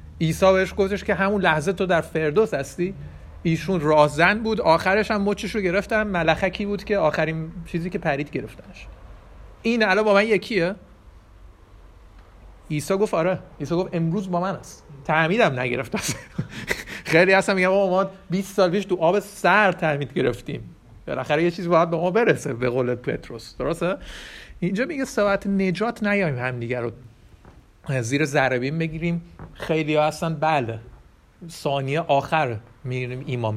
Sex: male